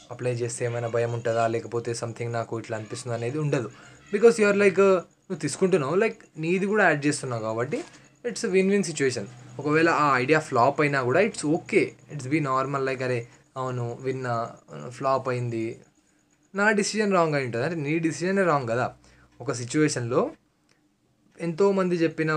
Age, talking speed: 20-39, 155 wpm